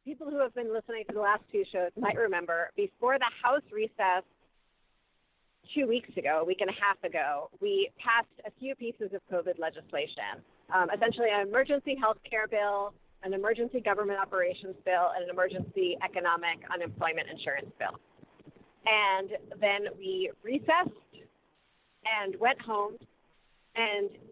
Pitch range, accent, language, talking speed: 195-240 Hz, American, English, 150 wpm